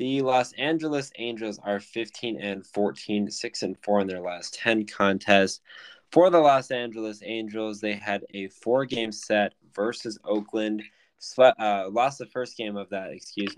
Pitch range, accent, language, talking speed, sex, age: 100-125 Hz, American, English, 165 wpm, male, 20-39